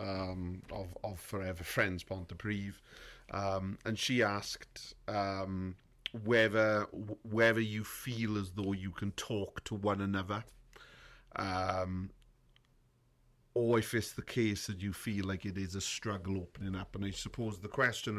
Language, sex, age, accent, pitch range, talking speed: English, male, 40-59, British, 95-110 Hz, 150 wpm